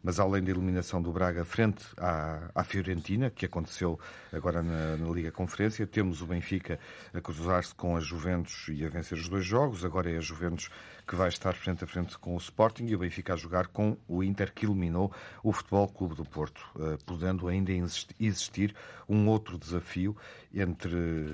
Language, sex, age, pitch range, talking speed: Portuguese, male, 50-69, 85-105 Hz, 185 wpm